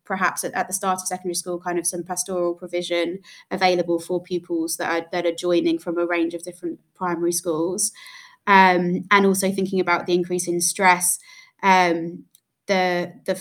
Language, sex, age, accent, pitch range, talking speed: English, female, 20-39, British, 175-190 Hz, 180 wpm